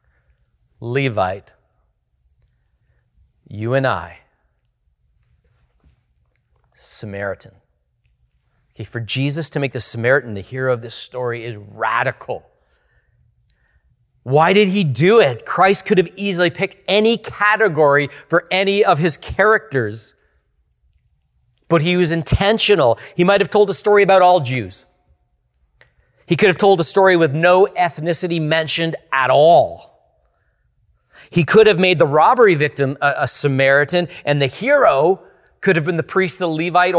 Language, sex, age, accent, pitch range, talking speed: English, male, 40-59, American, 110-180 Hz, 130 wpm